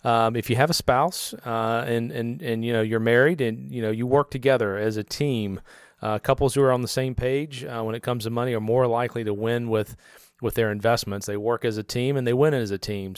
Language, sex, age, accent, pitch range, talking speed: English, male, 40-59, American, 105-125 Hz, 260 wpm